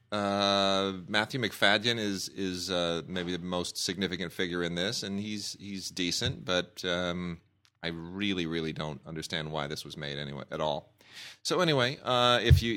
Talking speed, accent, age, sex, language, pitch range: 170 wpm, American, 30-49, male, English, 85-115 Hz